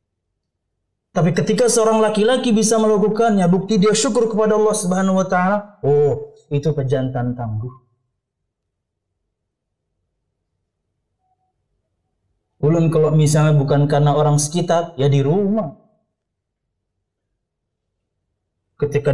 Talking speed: 90 wpm